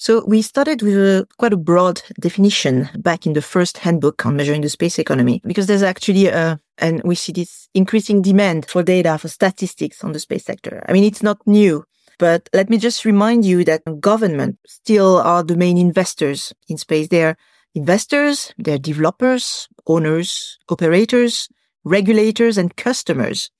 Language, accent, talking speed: English, French, 165 wpm